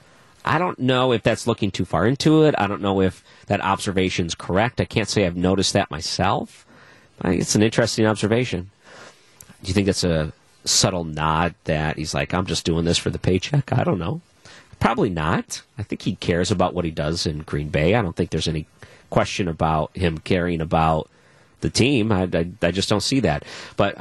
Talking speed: 200 wpm